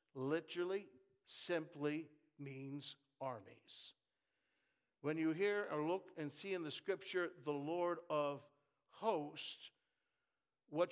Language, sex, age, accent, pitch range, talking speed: English, male, 60-79, American, 155-205 Hz, 105 wpm